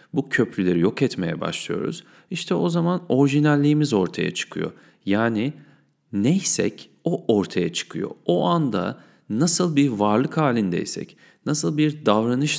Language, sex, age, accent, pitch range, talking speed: Turkish, male, 40-59, native, 105-155 Hz, 120 wpm